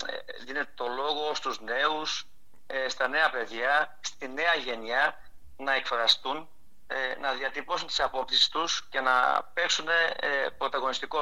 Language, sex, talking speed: Greek, male, 120 wpm